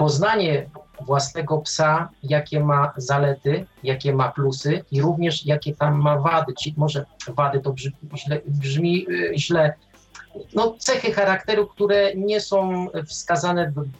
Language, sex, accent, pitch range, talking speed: Polish, male, native, 140-165 Hz, 125 wpm